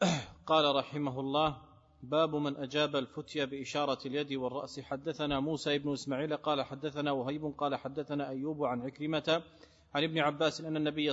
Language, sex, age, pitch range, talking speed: Arabic, male, 30-49, 145-160 Hz, 145 wpm